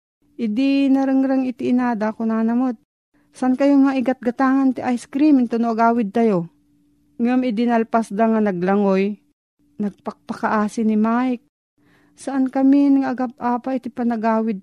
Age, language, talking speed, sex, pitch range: 40-59, Filipino, 125 wpm, female, 180-235 Hz